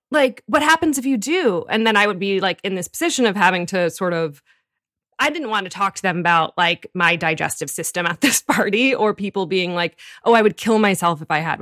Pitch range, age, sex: 165-205 Hz, 20-39, female